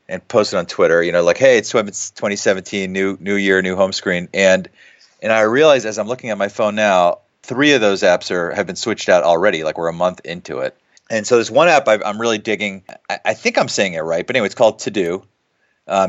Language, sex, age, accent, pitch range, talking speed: English, male, 30-49, American, 95-125 Hz, 245 wpm